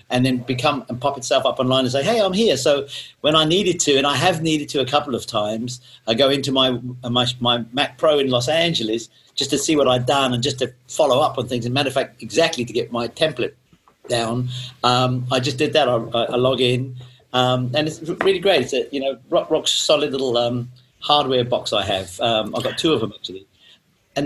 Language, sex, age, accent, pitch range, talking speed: English, male, 50-69, British, 125-145 Hz, 235 wpm